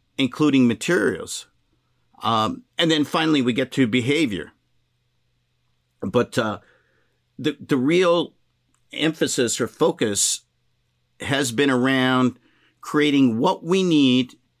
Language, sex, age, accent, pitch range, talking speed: English, male, 50-69, American, 120-145 Hz, 105 wpm